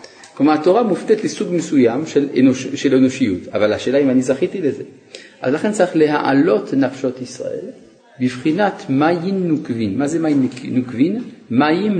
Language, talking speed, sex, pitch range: Hebrew, 150 wpm, male, 130-190 Hz